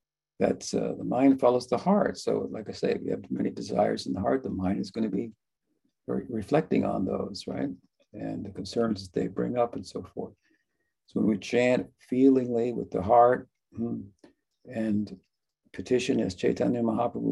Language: English